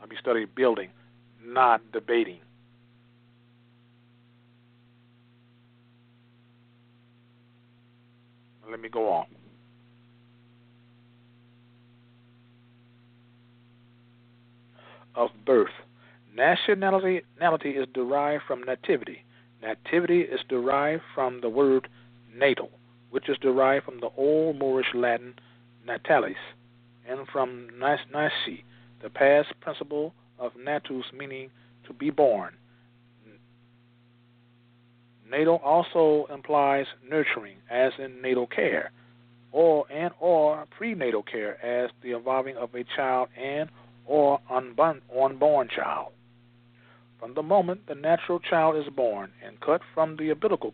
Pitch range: 120-140 Hz